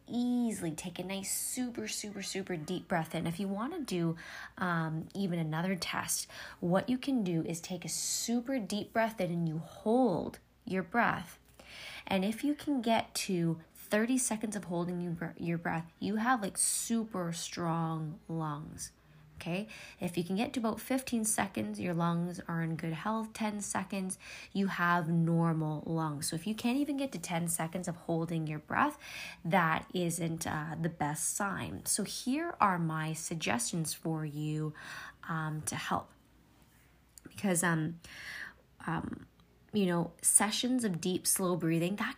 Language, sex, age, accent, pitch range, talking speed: English, female, 20-39, American, 165-220 Hz, 160 wpm